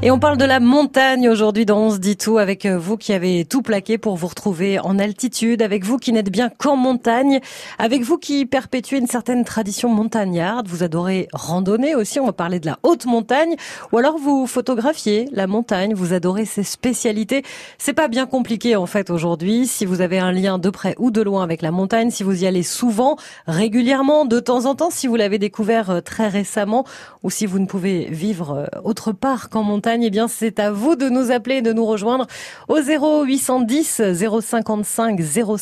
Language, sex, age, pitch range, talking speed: French, female, 30-49, 200-250 Hz, 200 wpm